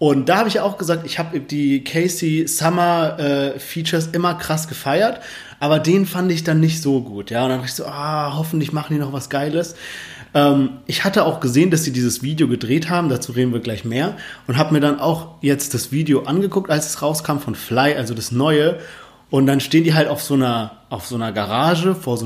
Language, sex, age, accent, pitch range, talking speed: German, male, 30-49, German, 135-170 Hz, 220 wpm